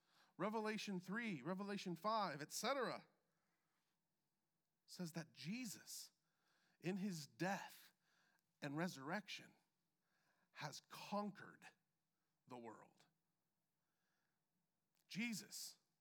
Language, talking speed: English, 65 wpm